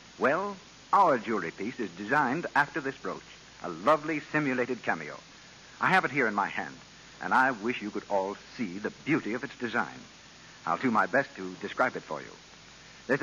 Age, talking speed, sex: 60-79, 190 wpm, male